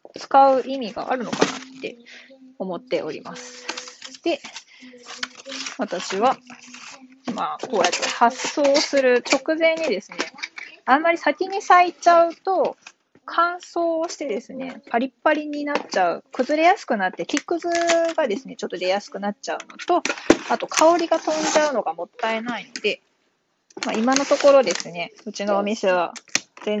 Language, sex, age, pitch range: Japanese, female, 20-39, 205-310 Hz